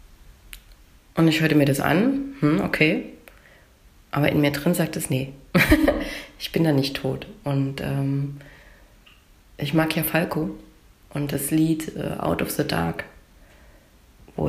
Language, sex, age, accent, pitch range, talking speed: German, female, 30-49, German, 140-170 Hz, 145 wpm